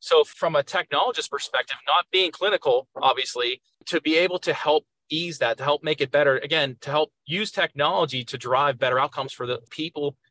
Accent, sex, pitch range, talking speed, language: American, male, 130-165 Hz, 190 wpm, English